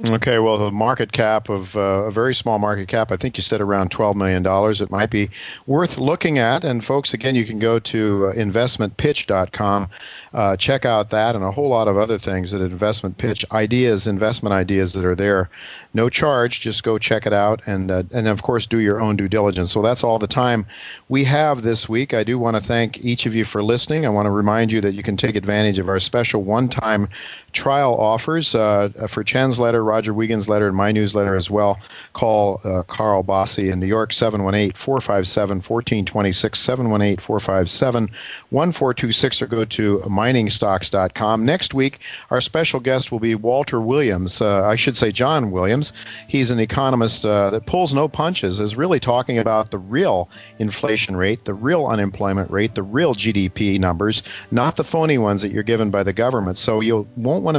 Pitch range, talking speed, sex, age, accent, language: 100-120 Hz, 190 wpm, male, 50-69, American, English